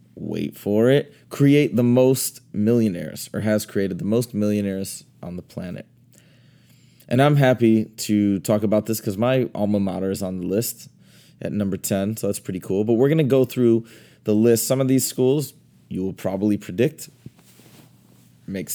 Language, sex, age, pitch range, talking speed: English, male, 20-39, 100-125 Hz, 175 wpm